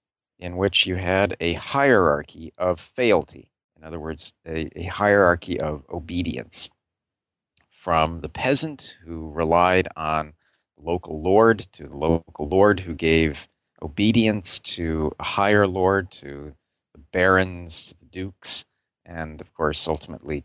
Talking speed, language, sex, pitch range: 135 wpm, English, male, 80-105 Hz